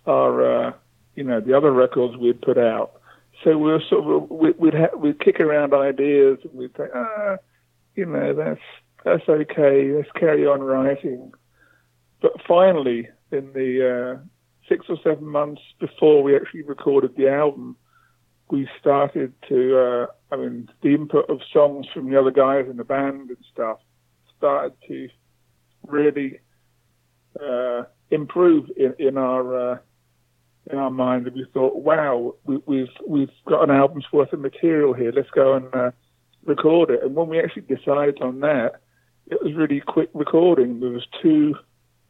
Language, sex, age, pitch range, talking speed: English, male, 50-69, 125-150 Hz, 165 wpm